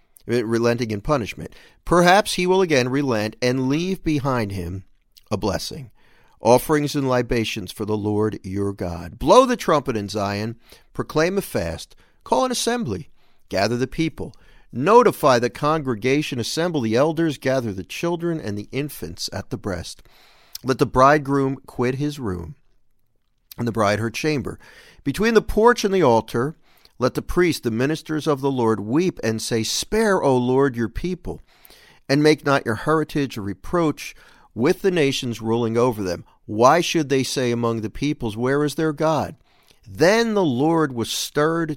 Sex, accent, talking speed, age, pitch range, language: male, American, 160 wpm, 50-69, 115-155 Hz, English